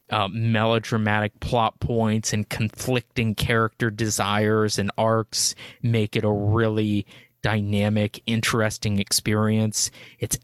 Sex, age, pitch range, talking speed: male, 20-39, 105-120 Hz, 105 wpm